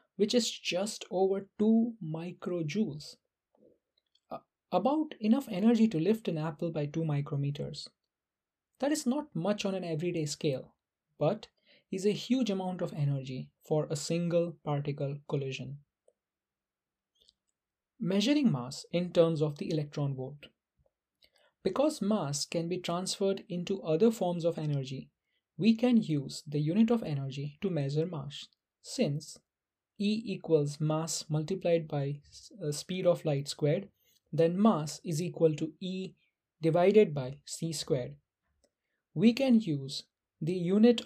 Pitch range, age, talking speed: 145-195 Hz, 20-39, 130 wpm